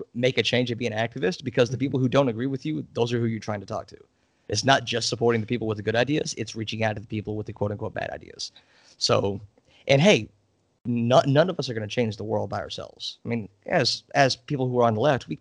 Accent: American